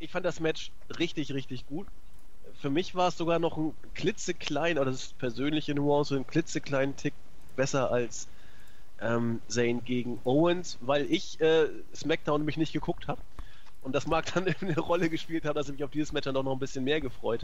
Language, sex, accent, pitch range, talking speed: German, male, German, 135-165 Hz, 205 wpm